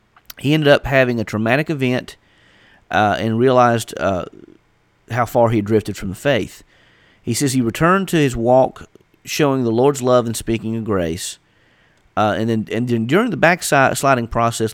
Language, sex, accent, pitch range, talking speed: English, male, American, 95-130 Hz, 175 wpm